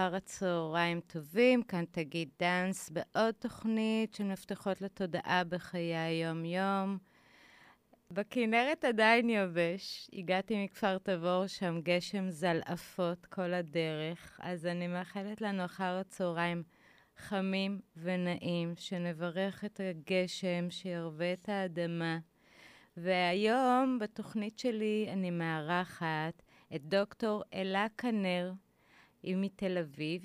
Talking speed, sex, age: 95 wpm, female, 30-49